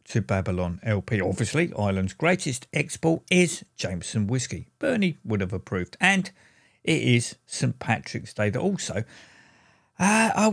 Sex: male